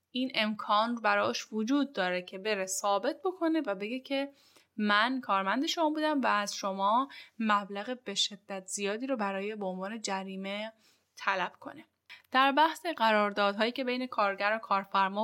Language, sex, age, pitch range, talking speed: Persian, female, 10-29, 205-265 Hz, 150 wpm